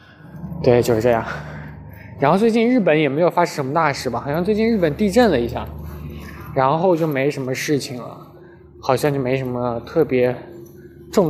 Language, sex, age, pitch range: Chinese, male, 20-39, 125-165 Hz